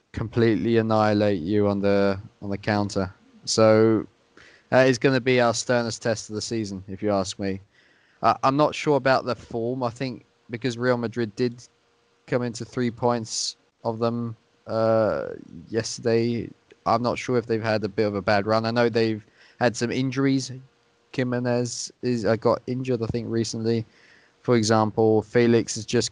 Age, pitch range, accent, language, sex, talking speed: 20-39, 105-120 Hz, British, English, male, 175 wpm